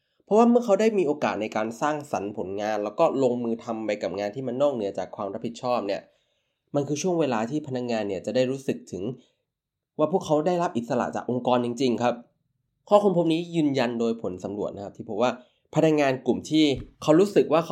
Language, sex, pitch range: Thai, male, 115-155 Hz